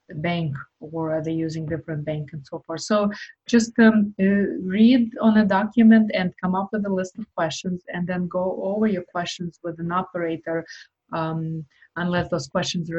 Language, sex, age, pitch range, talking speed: English, female, 20-39, 160-190 Hz, 185 wpm